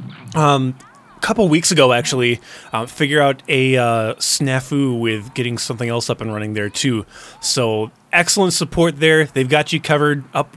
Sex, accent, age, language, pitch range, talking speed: male, American, 20-39, English, 115-155 Hz, 170 wpm